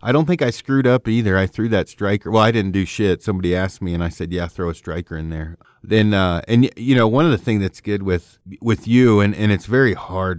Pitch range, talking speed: 90-115 Hz, 270 wpm